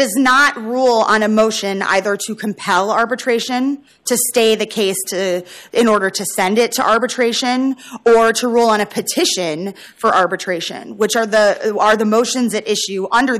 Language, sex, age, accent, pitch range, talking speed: English, female, 20-39, American, 190-230 Hz, 175 wpm